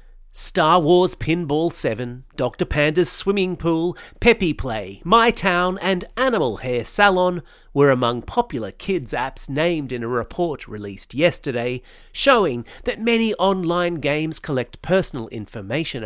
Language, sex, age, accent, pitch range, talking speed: English, male, 40-59, Australian, 120-180 Hz, 130 wpm